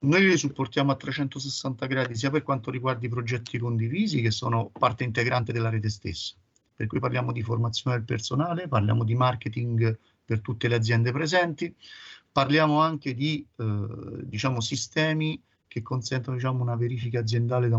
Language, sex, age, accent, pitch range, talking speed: Italian, male, 40-59, native, 115-140 Hz, 150 wpm